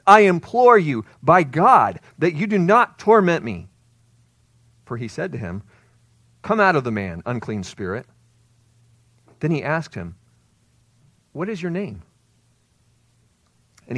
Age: 40-59